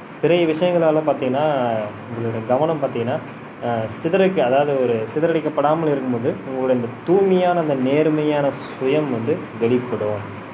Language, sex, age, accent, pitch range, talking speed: Tamil, male, 20-39, native, 115-140 Hz, 115 wpm